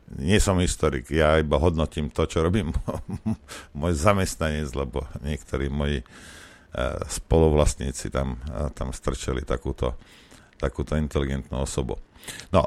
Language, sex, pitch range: Slovak, male, 80-110 Hz